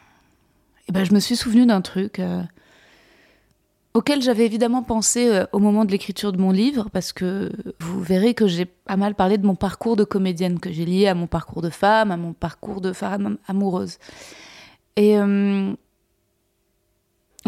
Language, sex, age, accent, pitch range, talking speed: French, female, 20-39, French, 180-210 Hz, 170 wpm